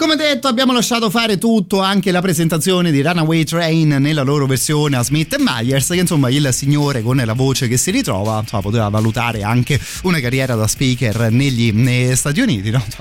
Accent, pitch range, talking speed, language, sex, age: native, 115-155 Hz, 200 wpm, Italian, male, 30-49